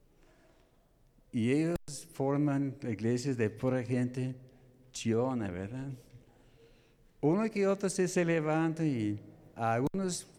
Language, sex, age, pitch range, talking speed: Spanish, male, 60-79, 115-145 Hz, 90 wpm